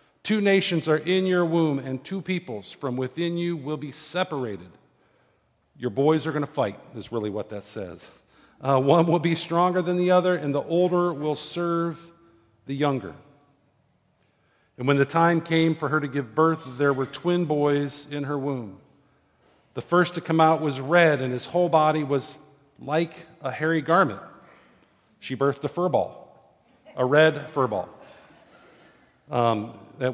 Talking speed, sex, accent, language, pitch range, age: 165 wpm, male, American, English, 125-155 Hz, 50-69